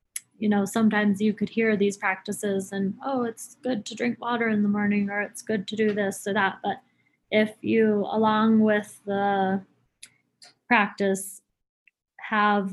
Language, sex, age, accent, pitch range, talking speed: English, female, 20-39, American, 195-215 Hz, 160 wpm